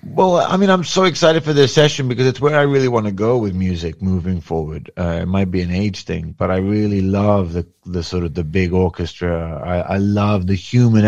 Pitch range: 100-130 Hz